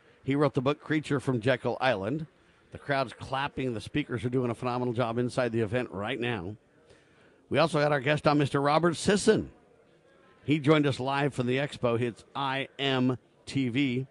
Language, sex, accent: English, male, American